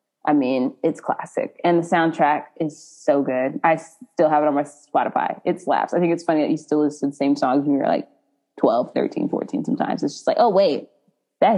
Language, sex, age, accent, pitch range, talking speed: English, female, 20-39, American, 155-240 Hz, 230 wpm